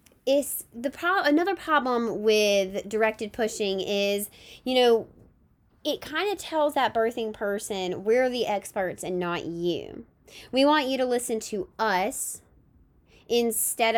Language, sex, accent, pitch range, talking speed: English, female, American, 190-250 Hz, 135 wpm